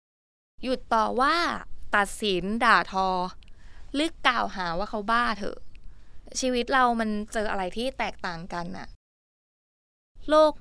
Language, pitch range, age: Thai, 190-250 Hz, 20-39